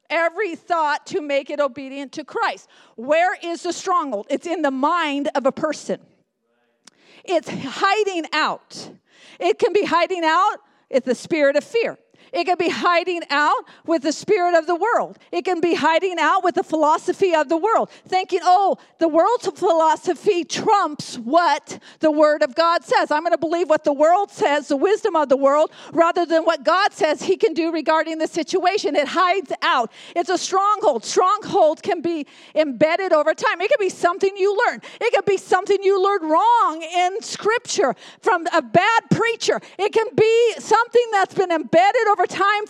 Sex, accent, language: female, American, English